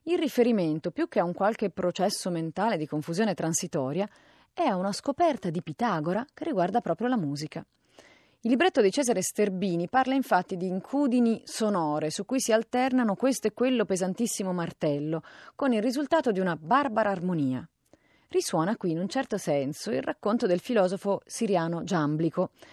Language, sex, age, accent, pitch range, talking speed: Italian, female, 30-49, native, 170-240 Hz, 160 wpm